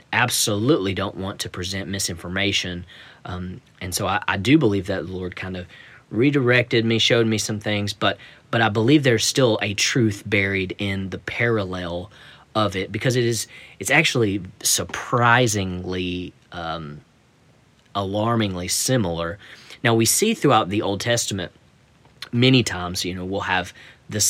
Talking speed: 150 wpm